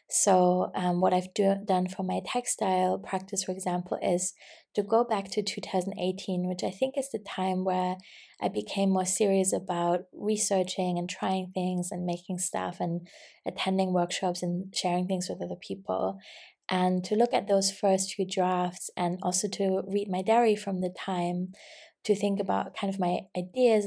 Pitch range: 180-195 Hz